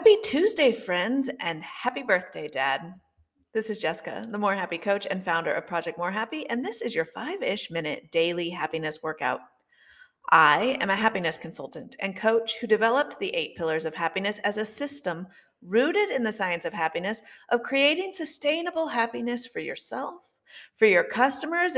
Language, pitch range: English, 180-275 Hz